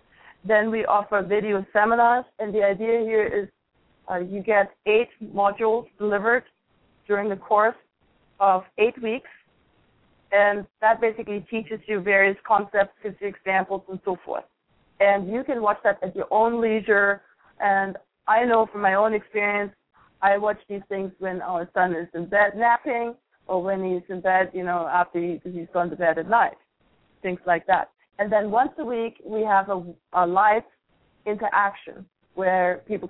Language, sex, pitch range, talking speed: English, female, 180-215 Hz, 165 wpm